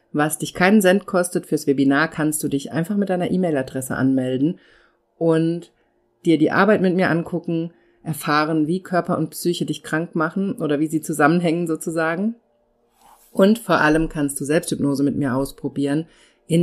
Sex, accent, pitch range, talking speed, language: female, German, 150-180 Hz, 160 wpm, German